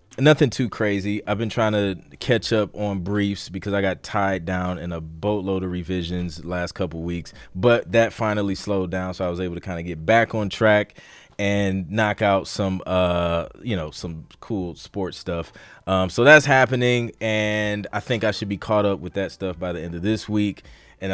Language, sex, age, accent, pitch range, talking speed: English, male, 20-39, American, 90-120 Hz, 205 wpm